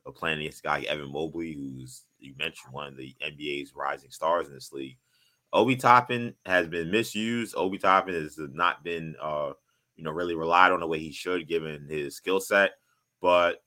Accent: American